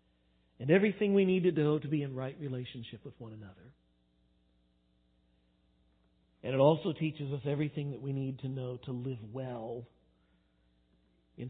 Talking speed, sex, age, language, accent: 150 wpm, male, 50-69, English, American